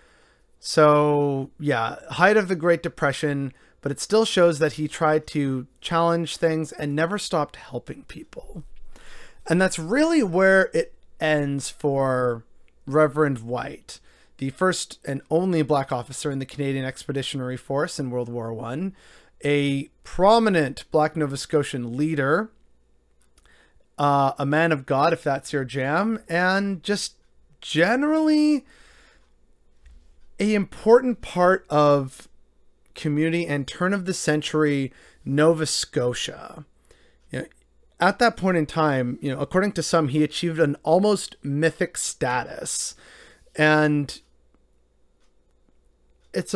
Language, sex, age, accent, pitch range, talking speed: English, male, 30-49, American, 135-175 Hz, 125 wpm